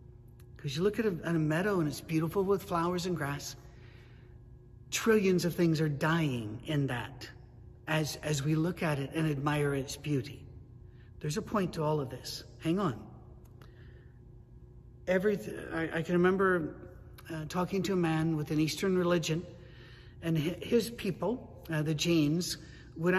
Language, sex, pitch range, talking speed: English, male, 130-180 Hz, 160 wpm